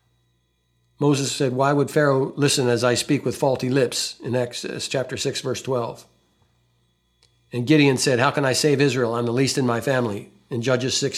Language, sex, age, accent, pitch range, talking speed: English, male, 60-79, American, 115-140 Hz, 190 wpm